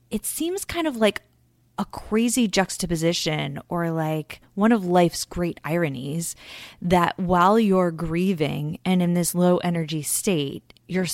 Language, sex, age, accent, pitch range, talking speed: English, female, 20-39, American, 165-230 Hz, 140 wpm